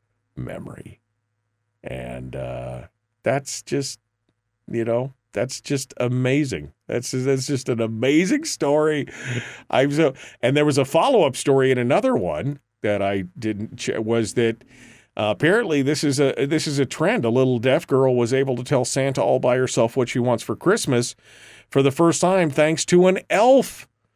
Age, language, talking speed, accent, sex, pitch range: 40-59, English, 165 wpm, American, male, 105-135 Hz